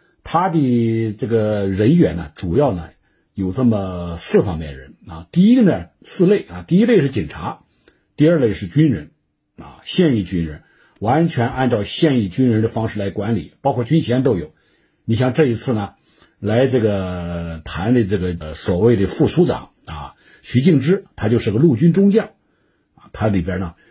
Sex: male